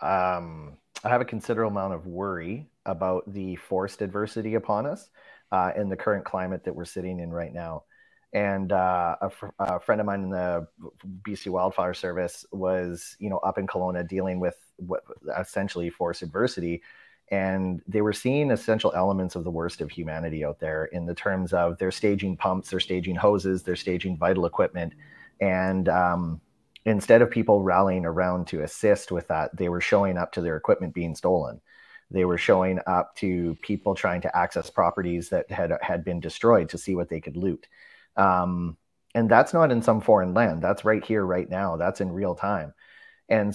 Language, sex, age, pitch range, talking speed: English, male, 30-49, 90-100 Hz, 190 wpm